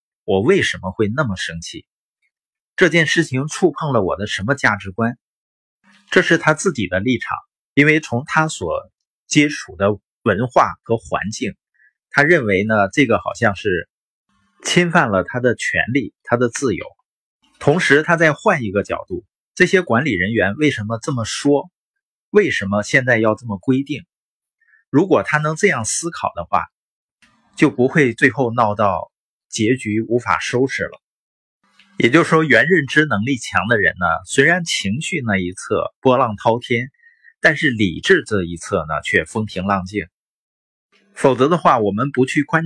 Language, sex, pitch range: Chinese, male, 105-155 Hz